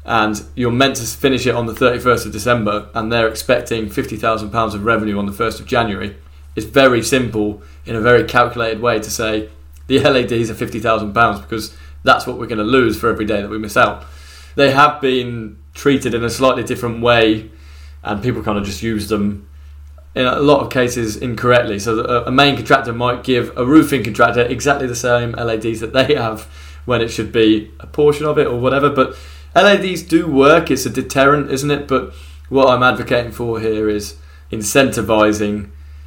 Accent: British